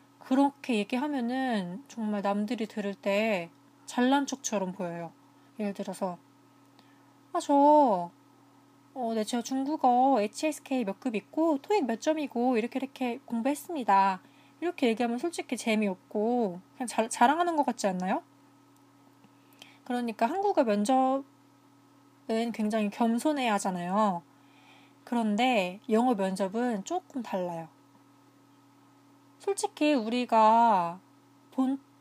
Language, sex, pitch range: Korean, female, 175-270 Hz